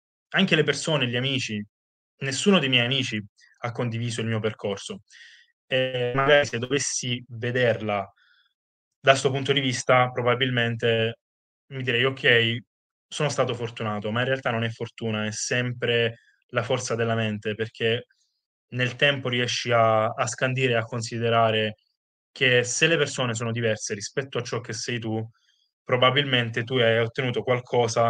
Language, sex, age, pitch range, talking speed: Italian, male, 20-39, 115-130 Hz, 150 wpm